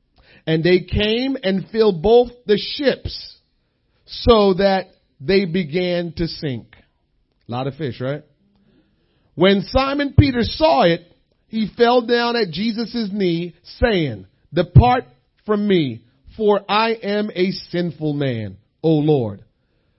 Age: 40-59